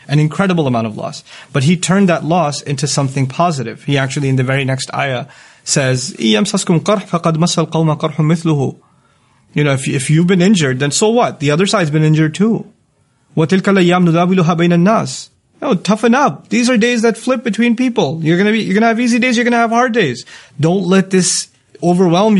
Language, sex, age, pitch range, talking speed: English, male, 30-49, 140-175 Hz, 175 wpm